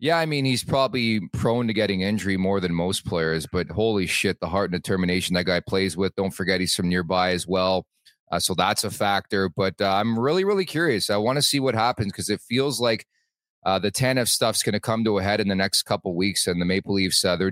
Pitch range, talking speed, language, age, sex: 105-145 Hz, 250 wpm, English, 30-49, male